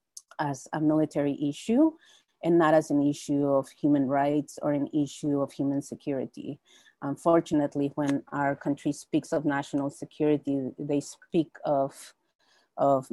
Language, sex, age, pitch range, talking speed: English, female, 30-49, 145-165 Hz, 135 wpm